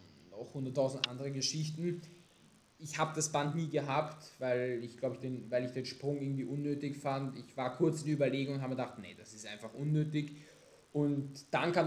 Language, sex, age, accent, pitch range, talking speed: German, male, 20-39, German, 135-160 Hz, 190 wpm